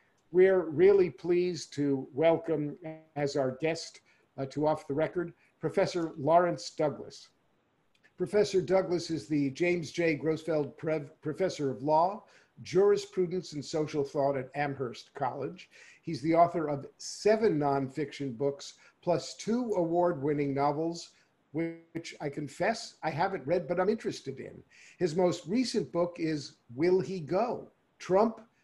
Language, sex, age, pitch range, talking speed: English, male, 50-69, 145-185 Hz, 130 wpm